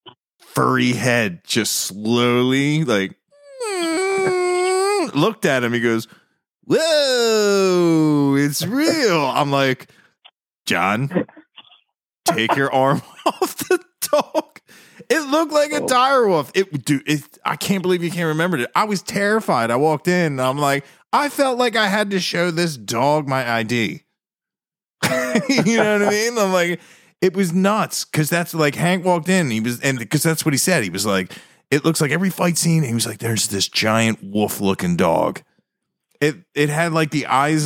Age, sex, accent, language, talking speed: 30-49, male, American, English, 165 wpm